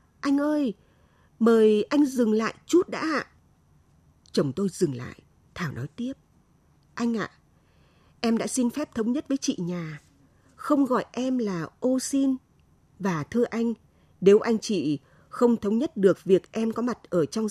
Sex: female